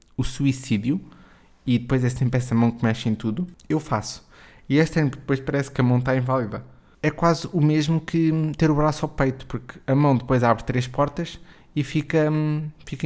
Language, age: Portuguese, 20-39